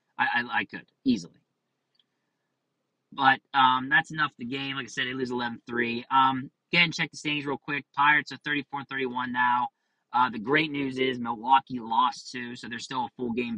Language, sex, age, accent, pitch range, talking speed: English, male, 30-49, American, 115-145 Hz, 190 wpm